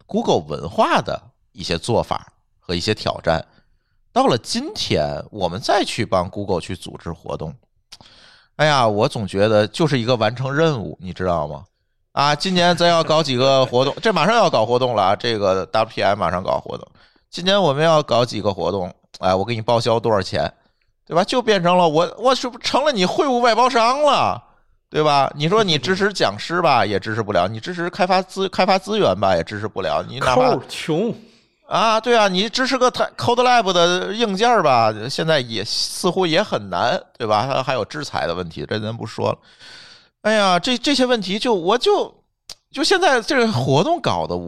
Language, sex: Chinese, male